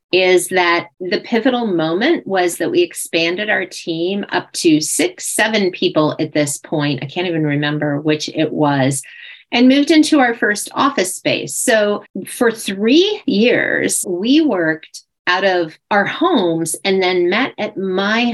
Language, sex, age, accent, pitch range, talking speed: English, female, 40-59, American, 170-235 Hz, 155 wpm